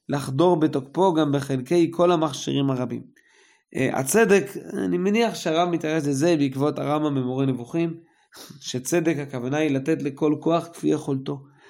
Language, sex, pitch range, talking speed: Hebrew, male, 140-175 Hz, 130 wpm